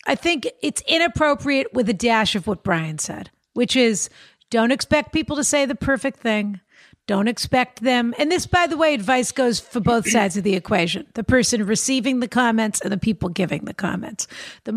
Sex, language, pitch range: female, English, 210-275 Hz